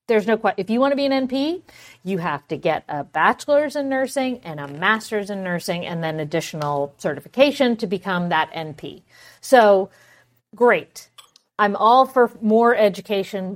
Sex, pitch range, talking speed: female, 175-230 Hz, 170 wpm